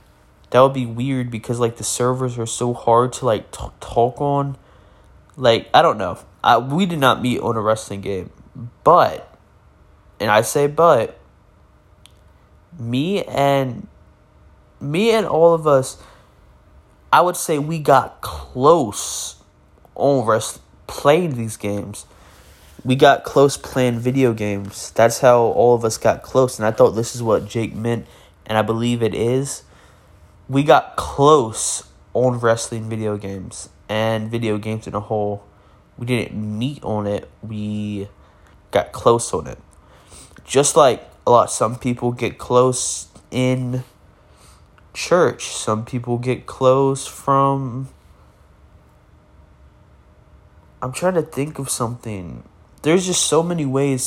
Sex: male